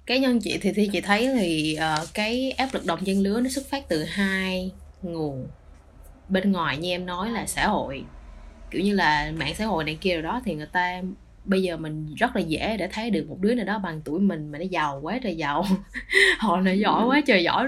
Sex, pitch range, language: female, 165-230 Hz, English